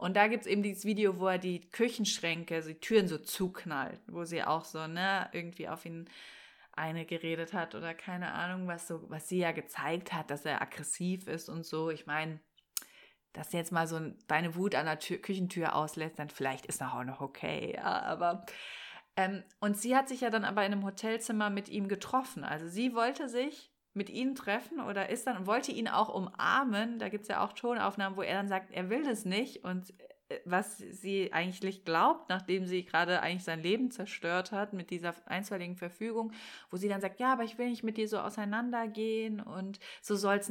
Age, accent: 30-49, German